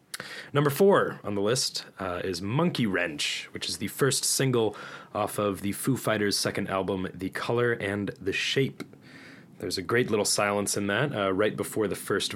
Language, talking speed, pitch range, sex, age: English, 185 wpm, 95-125 Hz, male, 30-49